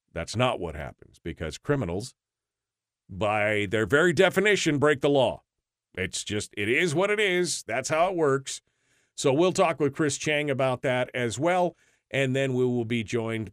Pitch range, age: 110-150 Hz, 40-59